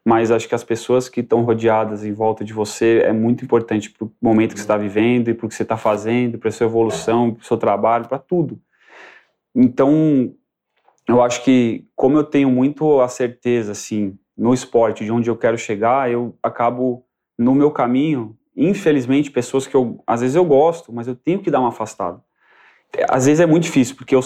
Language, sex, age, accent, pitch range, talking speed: Portuguese, male, 20-39, Brazilian, 115-135 Hz, 205 wpm